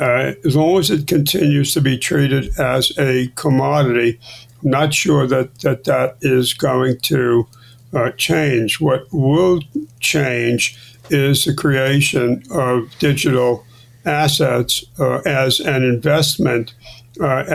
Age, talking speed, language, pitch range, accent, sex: 60-79, 125 wpm, English, 120-150 Hz, American, male